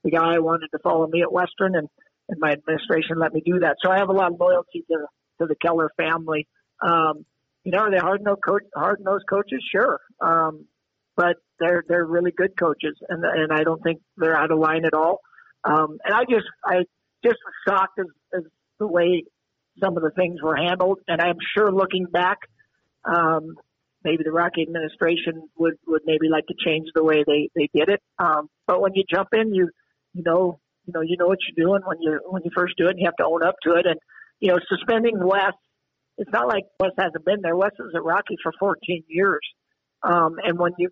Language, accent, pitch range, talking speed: English, American, 160-185 Hz, 220 wpm